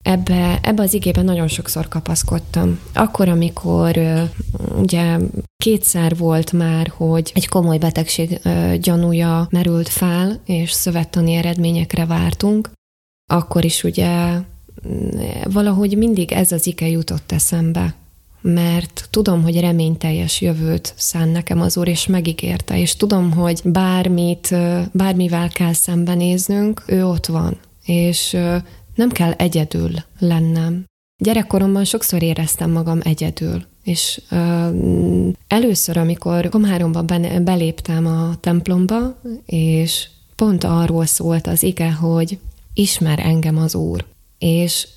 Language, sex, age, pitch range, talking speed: Hungarian, female, 20-39, 160-180 Hz, 115 wpm